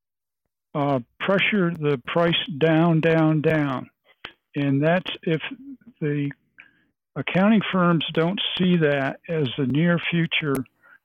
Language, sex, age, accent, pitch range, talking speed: English, male, 60-79, American, 140-170 Hz, 110 wpm